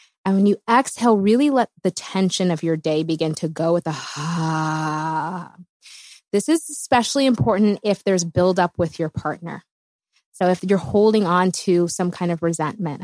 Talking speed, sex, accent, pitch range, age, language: 170 wpm, female, American, 170-205 Hz, 20-39, English